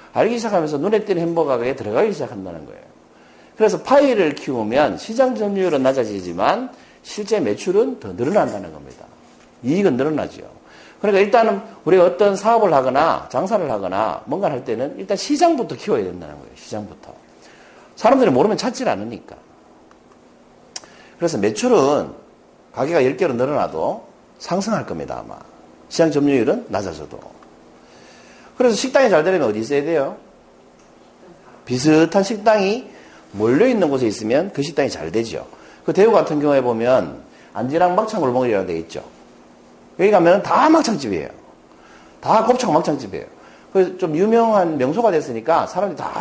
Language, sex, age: Korean, male, 50-69